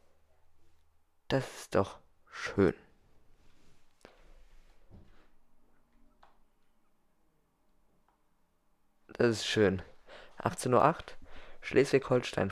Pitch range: 95-120 Hz